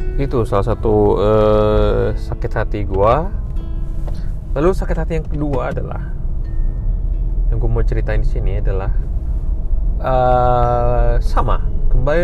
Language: Indonesian